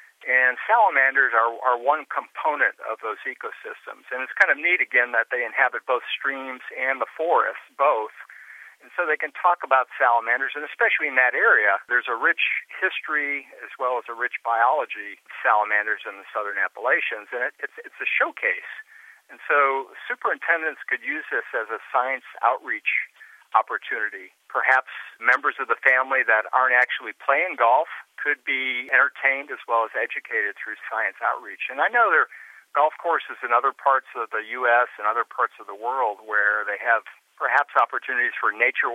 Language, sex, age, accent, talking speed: English, male, 50-69, American, 175 wpm